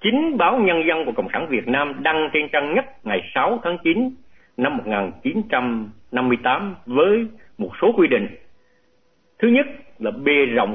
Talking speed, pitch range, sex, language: 160 wpm, 135-200 Hz, male, Vietnamese